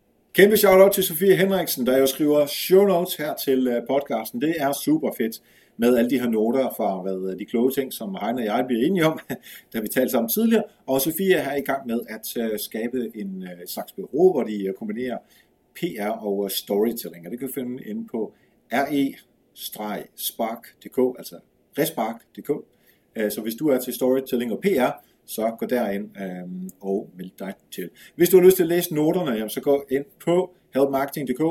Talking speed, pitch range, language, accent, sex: 175 wpm, 120-185 Hz, Danish, native, male